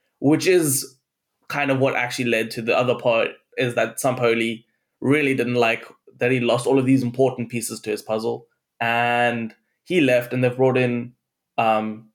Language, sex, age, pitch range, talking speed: English, male, 20-39, 115-135 Hz, 180 wpm